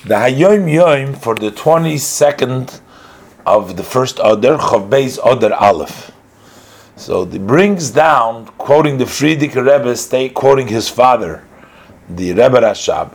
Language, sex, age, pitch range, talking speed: English, male, 50-69, 115-145 Hz, 125 wpm